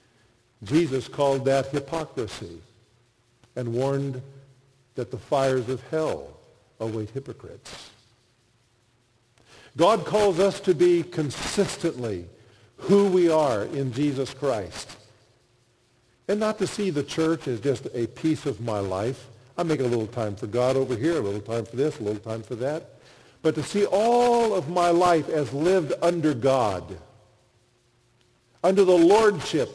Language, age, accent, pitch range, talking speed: English, 50-69, American, 120-165 Hz, 145 wpm